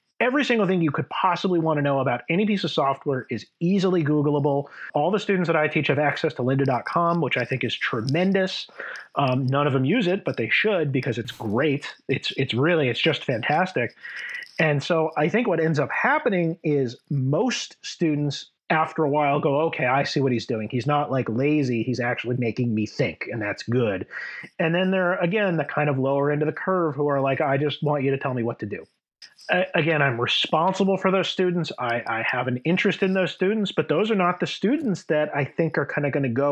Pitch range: 135-170 Hz